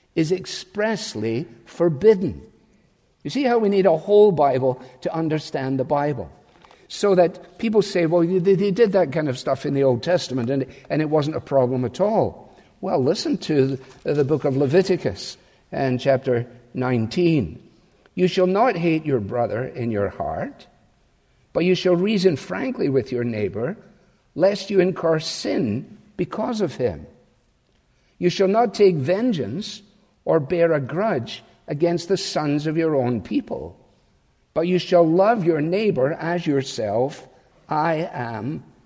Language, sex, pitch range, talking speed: English, male, 135-195 Hz, 150 wpm